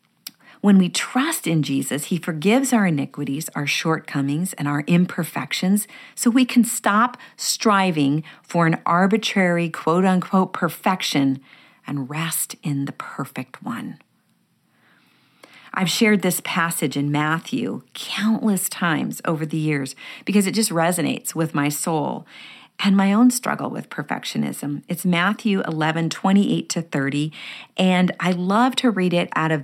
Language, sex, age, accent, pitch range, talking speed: English, female, 40-59, American, 150-195 Hz, 140 wpm